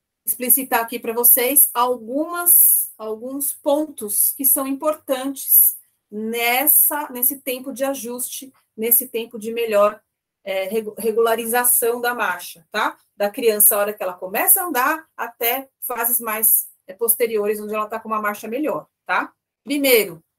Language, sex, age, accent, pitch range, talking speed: Portuguese, female, 30-49, Brazilian, 220-275 Hz, 125 wpm